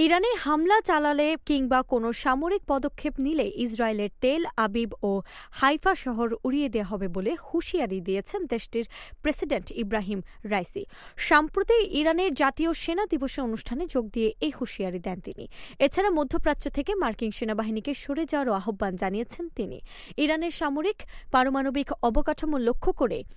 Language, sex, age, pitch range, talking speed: English, female, 20-39, 215-320 Hz, 115 wpm